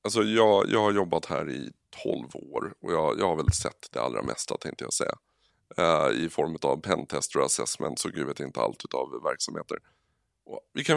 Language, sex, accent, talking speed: Swedish, male, native, 200 wpm